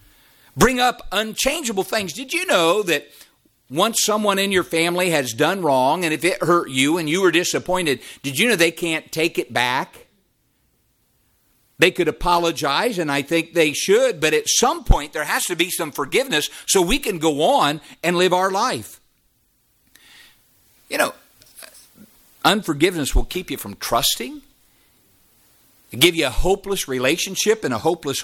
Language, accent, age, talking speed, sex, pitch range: English, American, 50-69, 160 wpm, male, 150-210 Hz